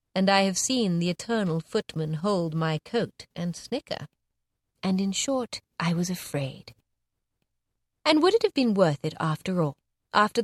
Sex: female